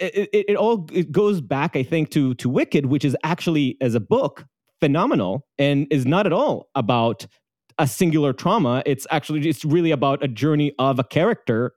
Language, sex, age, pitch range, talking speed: English, male, 30-49, 130-180 Hz, 195 wpm